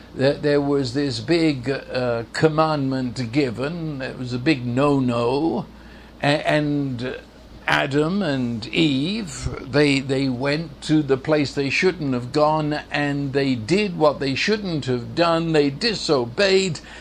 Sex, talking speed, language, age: male, 130 wpm, English, 60-79